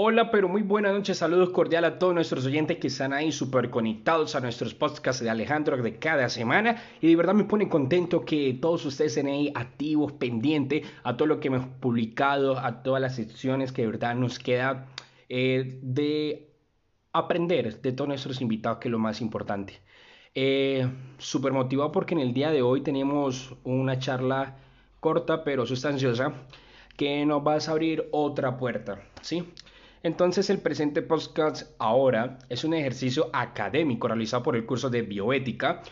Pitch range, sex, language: 125-160 Hz, male, Spanish